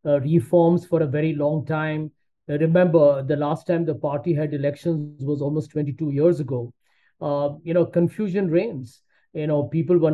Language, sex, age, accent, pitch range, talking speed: English, male, 50-69, Indian, 145-165 Hz, 170 wpm